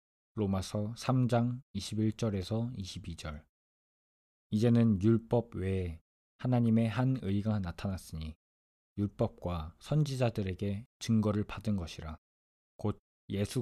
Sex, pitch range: male, 80-115 Hz